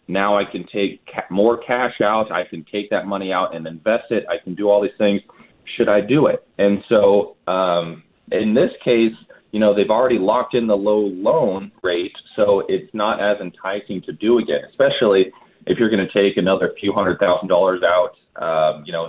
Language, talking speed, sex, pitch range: English, 205 wpm, male, 90-115 Hz